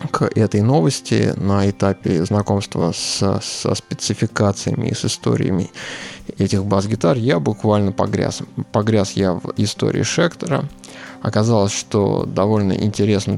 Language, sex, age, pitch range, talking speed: Russian, male, 20-39, 100-115 Hz, 115 wpm